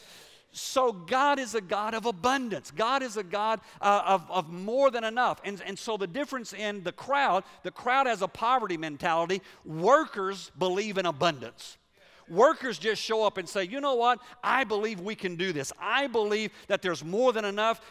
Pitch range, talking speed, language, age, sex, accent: 180-235 Hz, 190 wpm, English, 50-69, male, American